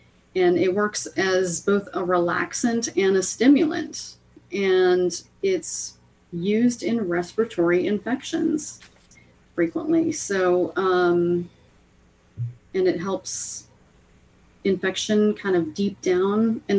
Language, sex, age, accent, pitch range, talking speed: English, female, 30-49, American, 175-225 Hz, 100 wpm